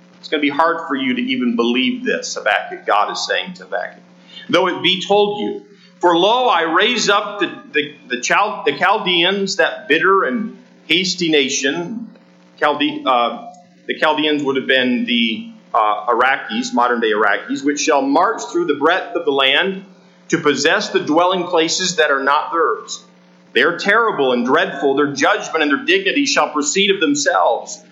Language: English